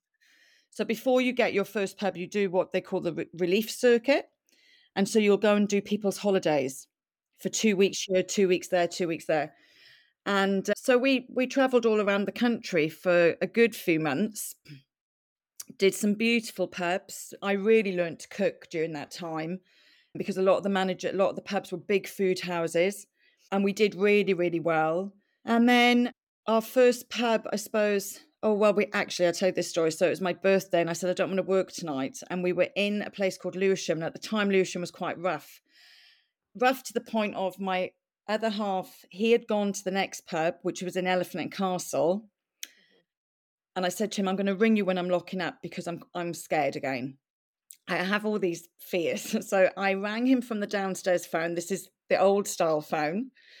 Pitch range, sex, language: 180-215 Hz, female, English